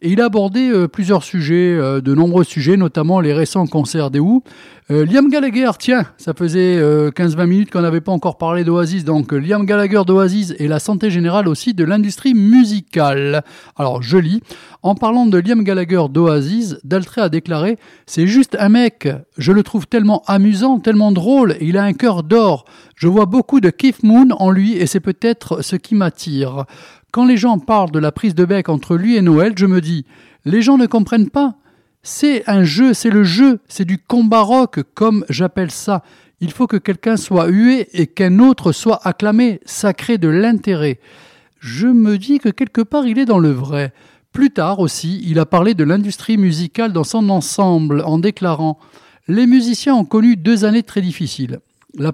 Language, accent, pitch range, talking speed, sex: French, French, 165-225 Hz, 200 wpm, male